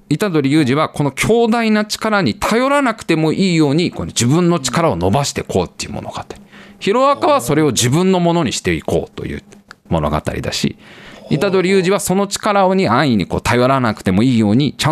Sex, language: male, Japanese